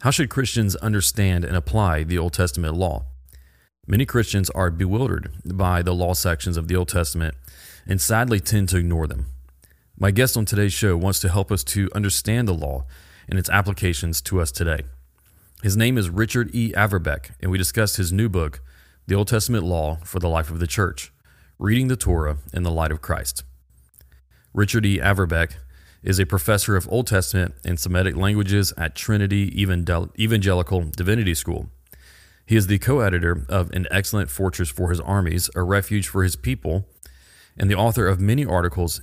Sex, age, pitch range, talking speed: male, 30-49, 85-100 Hz, 180 wpm